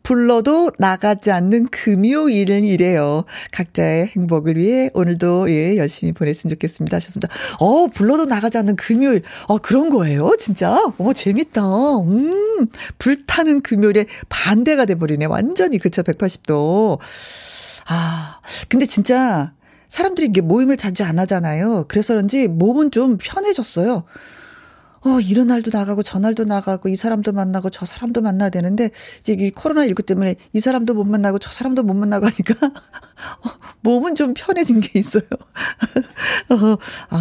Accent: native